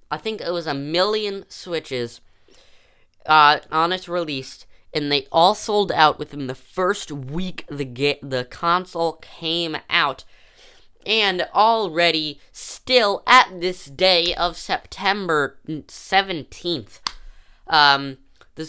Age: 10-29